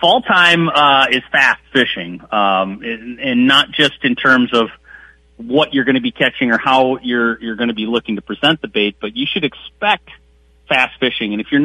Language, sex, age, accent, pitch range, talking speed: English, male, 30-49, American, 105-130 Hz, 200 wpm